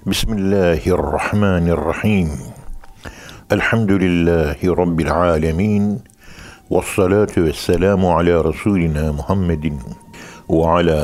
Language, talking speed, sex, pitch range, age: Turkish, 60 wpm, male, 80-95 Hz, 60-79